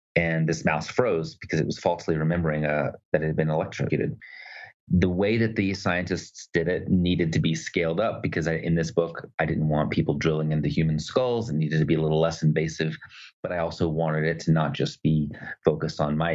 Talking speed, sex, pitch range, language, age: 225 wpm, male, 75-85 Hz, English, 30-49